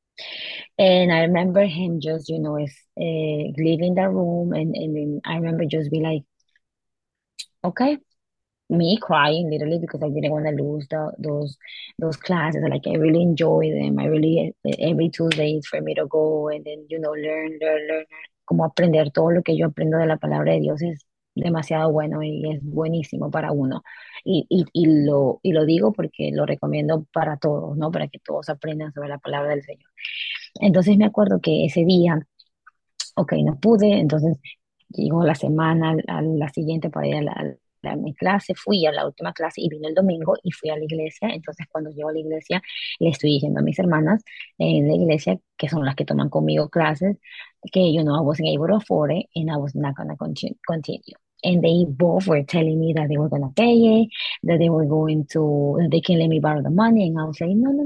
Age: 20-39